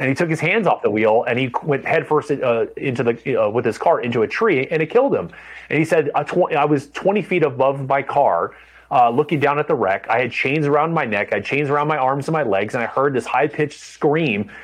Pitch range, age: 120-150 Hz, 30-49